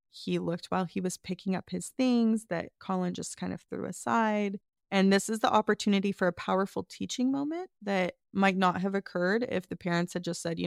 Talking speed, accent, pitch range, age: 215 wpm, American, 175-200 Hz, 20-39